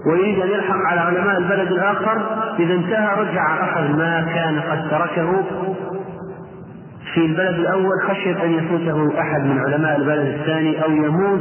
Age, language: 40-59, Arabic